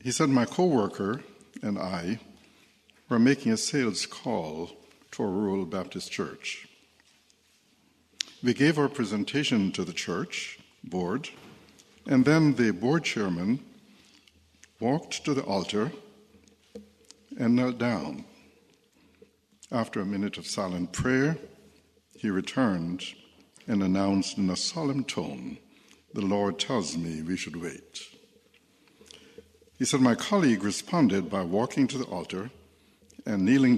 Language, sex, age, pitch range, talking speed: English, male, 60-79, 95-145 Hz, 125 wpm